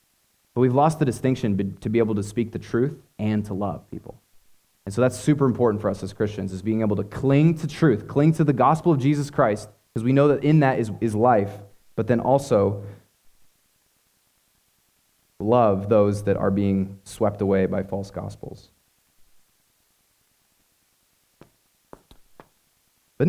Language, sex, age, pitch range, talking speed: English, male, 20-39, 105-155 Hz, 160 wpm